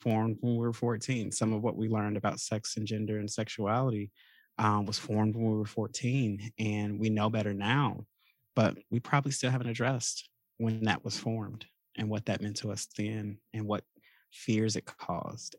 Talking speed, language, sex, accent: 195 wpm, English, male, American